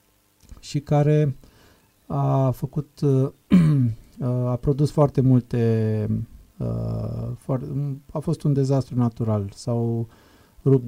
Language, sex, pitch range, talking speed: Romanian, male, 115-140 Hz, 85 wpm